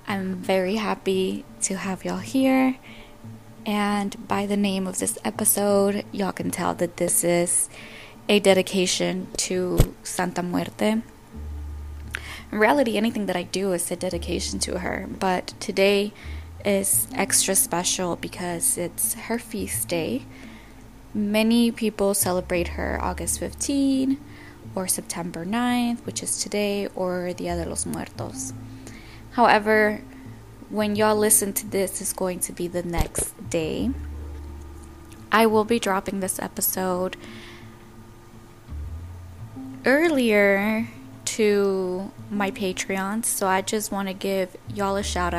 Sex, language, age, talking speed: female, English, 20-39, 125 wpm